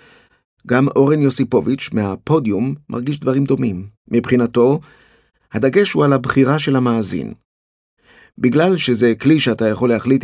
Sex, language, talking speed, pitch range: male, Hebrew, 115 wpm, 115-140 Hz